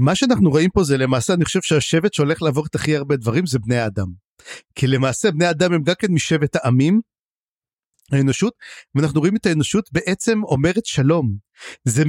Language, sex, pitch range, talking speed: Hebrew, male, 145-205 Hz, 180 wpm